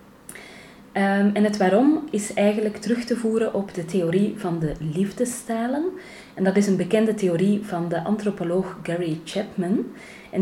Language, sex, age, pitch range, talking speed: Dutch, female, 30-49, 170-205 Hz, 150 wpm